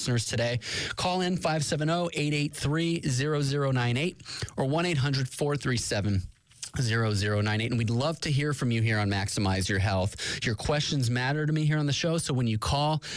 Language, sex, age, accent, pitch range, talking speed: English, male, 30-49, American, 115-155 Hz, 145 wpm